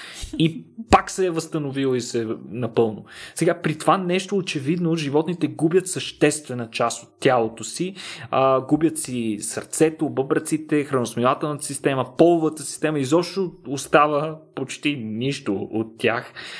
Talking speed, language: 130 wpm, Bulgarian